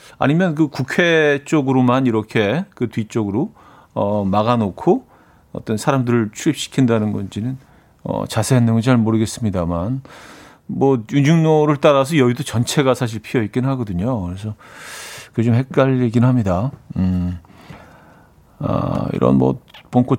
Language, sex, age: Korean, male, 40-59